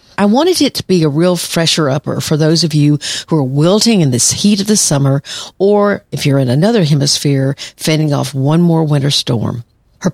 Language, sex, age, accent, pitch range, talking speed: English, female, 50-69, American, 140-175 Hz, 200 wpm